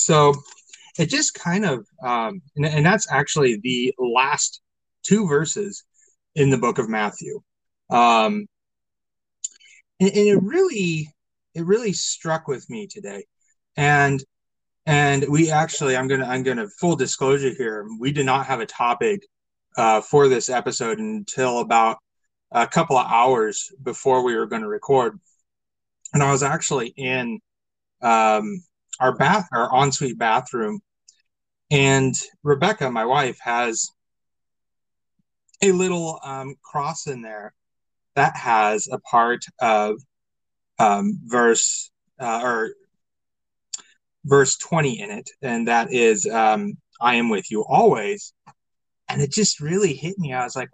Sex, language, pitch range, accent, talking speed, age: male, English, 125-190 Hz, American, 140 wpm, 30-49